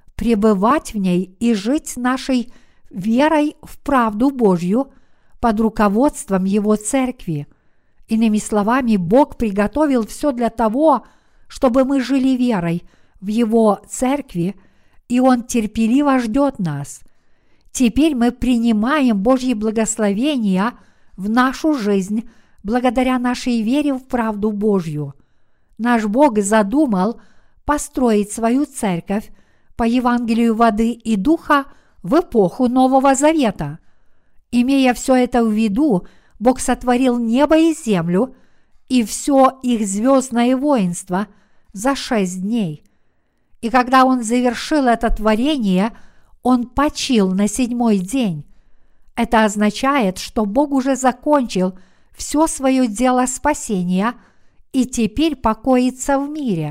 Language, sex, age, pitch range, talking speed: Russian, female, 50-69, 210-265 Hz, 110 wpm